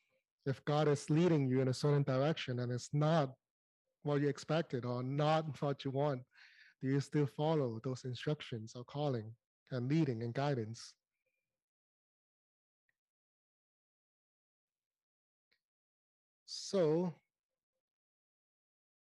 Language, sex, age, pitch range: Chinese, male, 30-49, 135-160 Hz